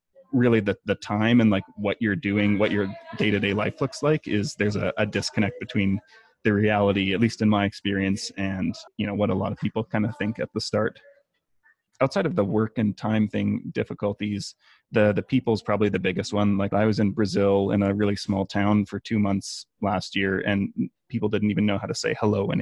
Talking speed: 220 wpm